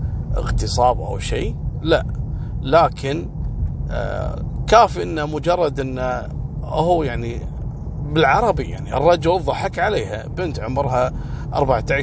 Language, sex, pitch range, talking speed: Arabic, male, 110-140 Hz, 100 wpm